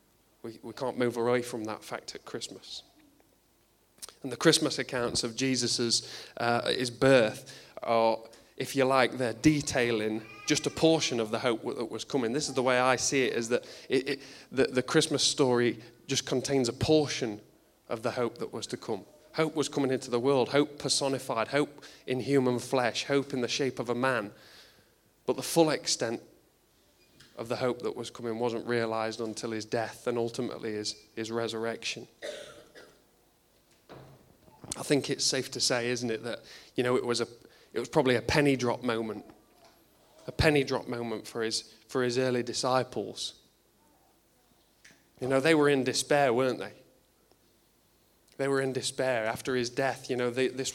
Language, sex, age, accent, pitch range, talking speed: English, male, 20-39, British, 115-135 Hz, 175 wpm